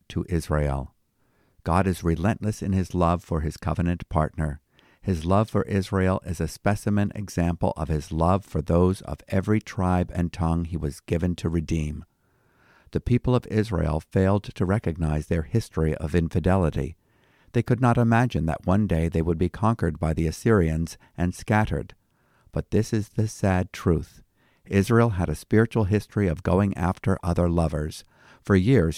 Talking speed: 165 wpm